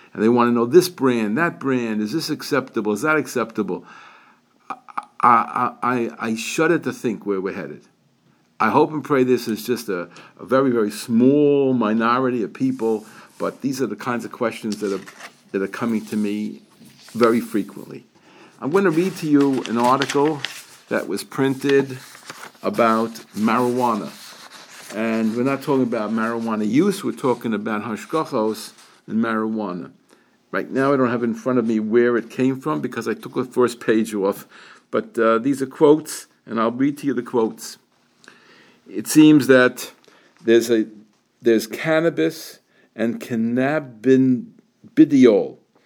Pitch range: 115-140 Hz